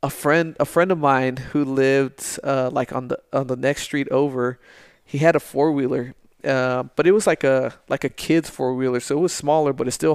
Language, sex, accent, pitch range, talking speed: English, male, American, 130-150 Hz, 225 wpm